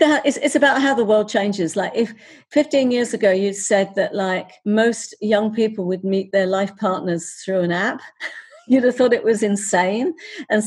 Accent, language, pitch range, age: British, English, 195-225 Hz, 50-69